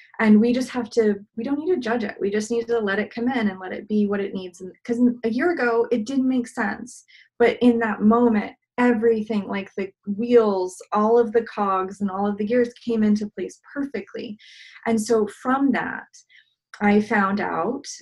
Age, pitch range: 20-39, 190-235 Hz